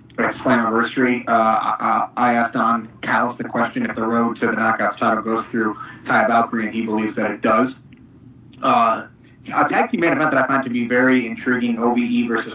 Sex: male